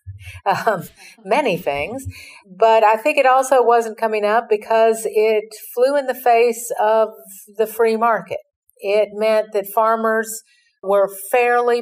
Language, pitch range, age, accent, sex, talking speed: English, 170-215 Hz, 50-69, American, female, 135 wpm